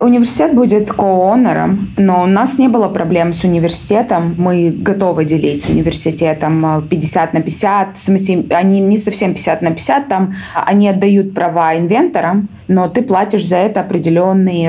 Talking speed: 155 wpm